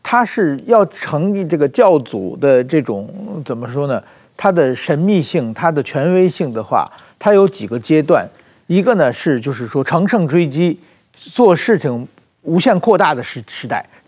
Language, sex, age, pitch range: Chinese, male, 50-69, 145-210 Hz